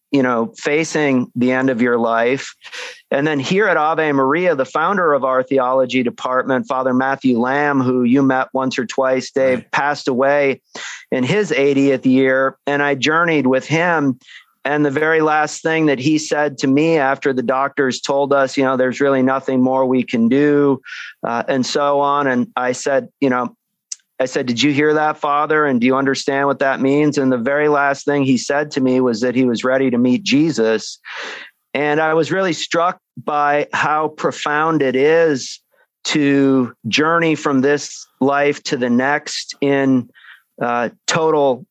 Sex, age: male, 40-59